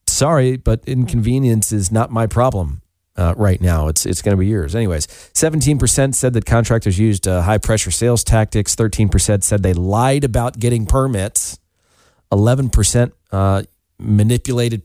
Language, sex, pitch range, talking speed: English, male, 90-115 Hz, 150 wpm